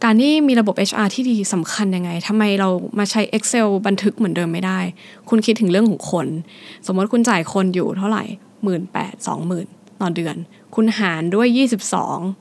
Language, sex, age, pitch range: Thai, female, 20-39, 190-230 Hz